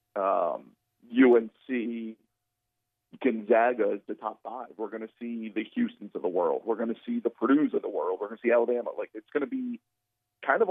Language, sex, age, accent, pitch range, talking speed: English, male, 40-59, American, 115-145 Hz, 205 wpm